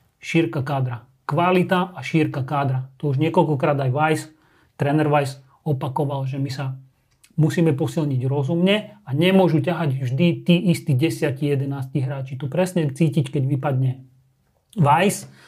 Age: 30-49